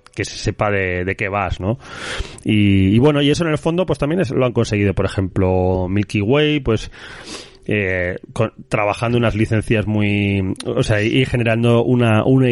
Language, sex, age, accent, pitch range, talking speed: Spanish, male, 30-49, Spanish, 100-135 Hz, 185 wpm